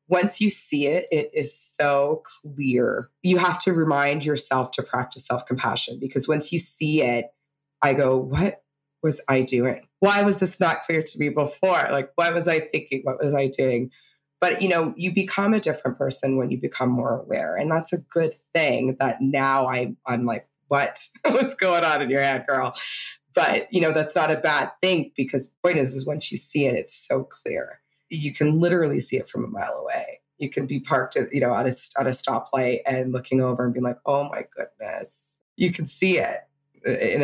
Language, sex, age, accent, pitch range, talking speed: English, female, 20-39, American, 130-165 Hz, 205 wpm